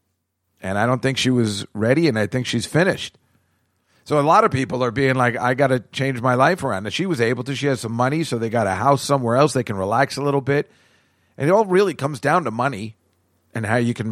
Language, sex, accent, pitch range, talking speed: English, male, American, 100-135 Hz, 260 wpm